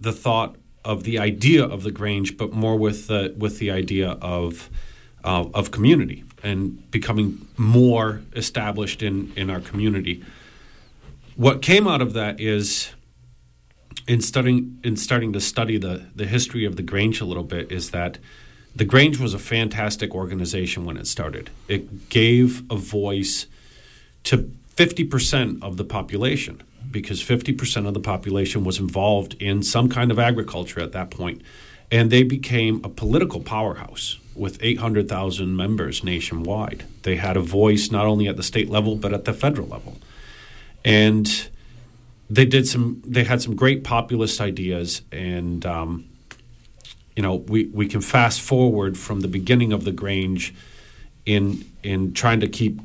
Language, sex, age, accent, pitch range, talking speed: English, male, 40-59, American, 95-120 Hz, 160 wpm